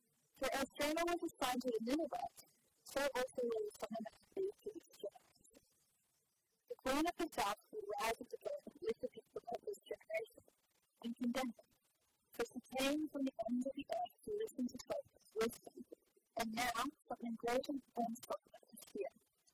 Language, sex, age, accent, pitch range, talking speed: English, female, 40-59, American, 235-335 Hz, 185 wpm